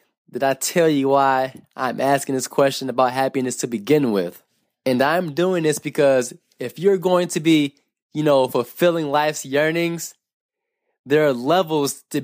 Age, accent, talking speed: 20-39, American, 160 wpm